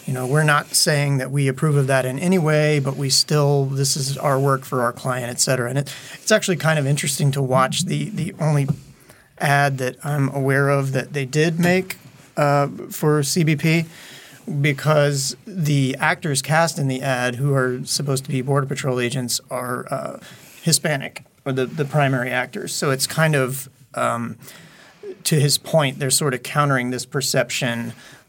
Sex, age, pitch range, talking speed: male, 30-49, 130-150 Hz, 180 wpm